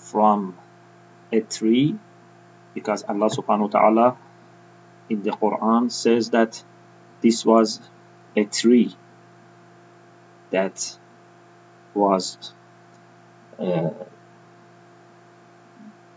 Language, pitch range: English, 110-175 Hz